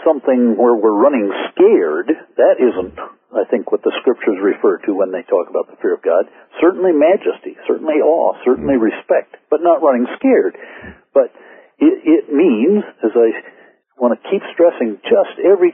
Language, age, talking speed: English, 60-79, 170 wpm